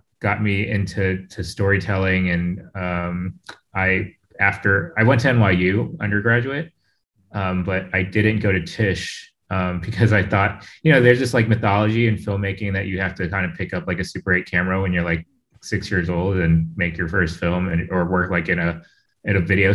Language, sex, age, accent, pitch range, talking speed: English, male, 20-39, American, 90-110 Hz, 200 wpm